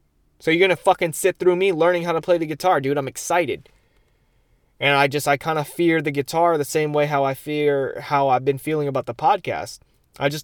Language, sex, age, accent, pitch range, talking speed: English, male, 20-39, American, 125-155 Hz, 235 wpm